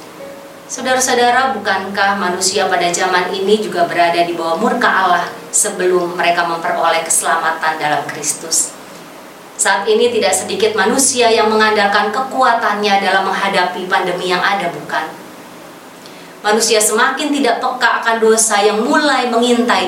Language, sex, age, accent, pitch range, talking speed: Indonesian, female, 30-49, native, 180-225 Hz, 125 wpm